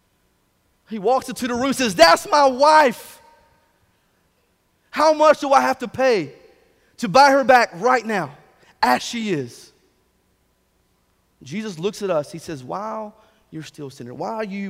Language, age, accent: English, 40-59, American